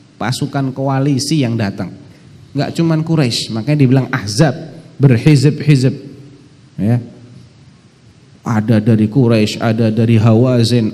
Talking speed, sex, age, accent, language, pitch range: 105 wpm, male, 30-49, native, Indonesian, 110-140 Hz